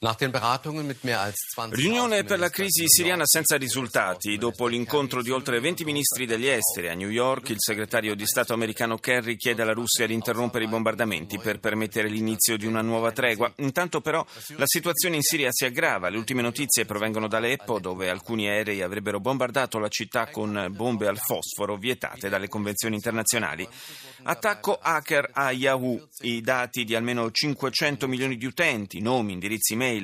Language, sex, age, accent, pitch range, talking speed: Italian, male, 30-49, native, 110-130 Hz, 160 wpm